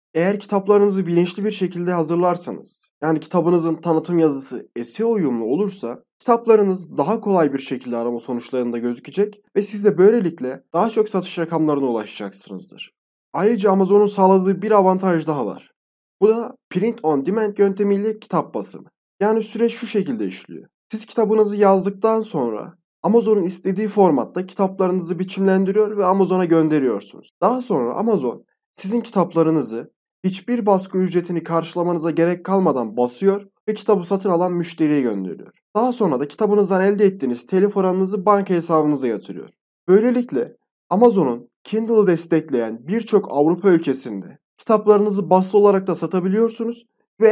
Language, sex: Turkish, male